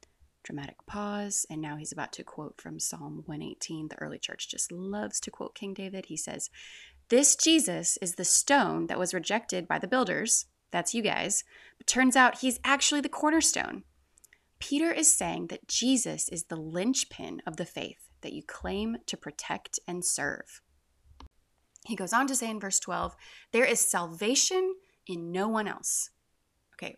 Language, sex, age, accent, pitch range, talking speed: English, female, 20-39, American, 170-255 Hz, 170 wpm